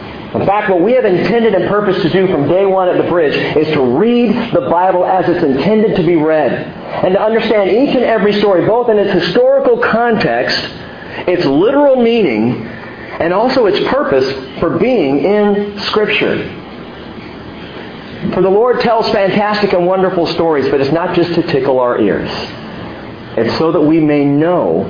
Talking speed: 175 wpm